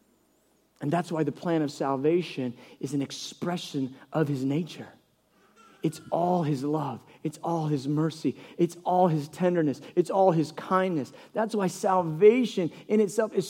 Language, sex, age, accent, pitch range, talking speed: English, male, 40-59, American, 185-255 Hz, 155 wpm